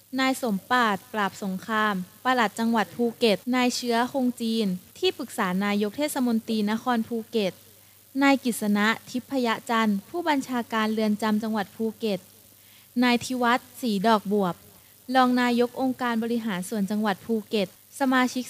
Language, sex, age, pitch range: Thai, female, 20-39, 205-255 Hz